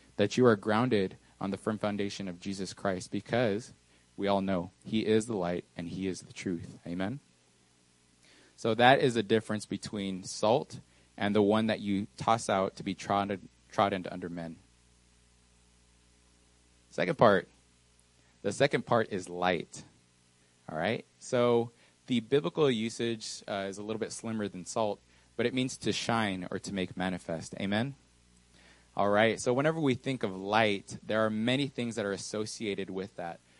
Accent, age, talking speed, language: American, 20-39, 165 wpm, English